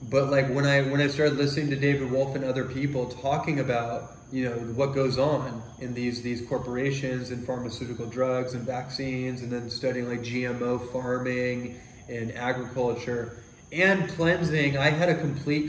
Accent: American